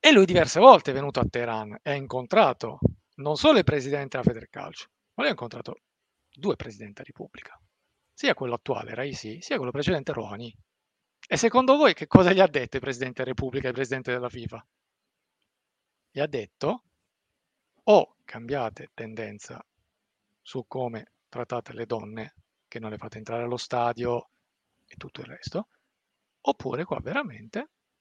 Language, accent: Italian, native